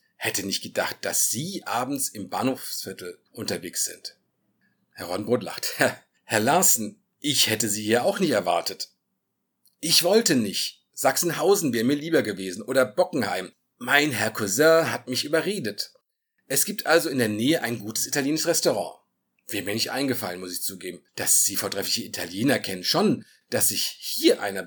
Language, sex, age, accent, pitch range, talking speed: German, male, 50-69, German, 105-145 Hz, 160 wpm